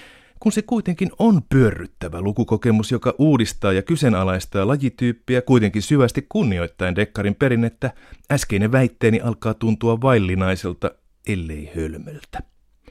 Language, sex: Finnish, male